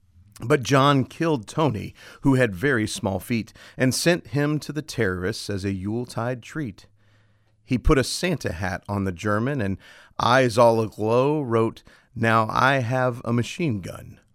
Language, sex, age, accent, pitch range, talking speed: English, male, 40-59, American, 100-140 Hz, 160 wpm